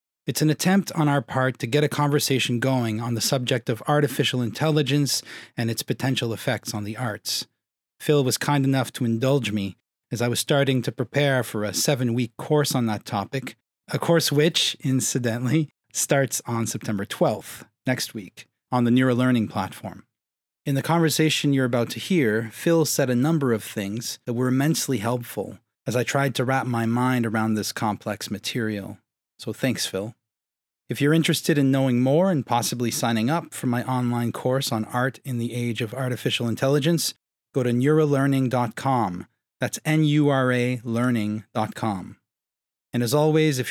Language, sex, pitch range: English, male, 115-140 Hz